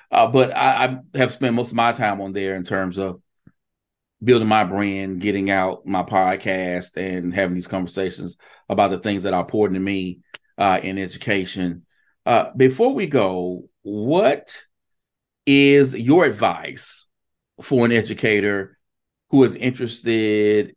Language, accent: English, American